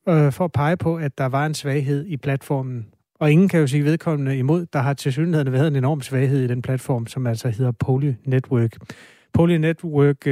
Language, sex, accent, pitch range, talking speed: Danish, male, native, 125-150 Hz, 210 wpm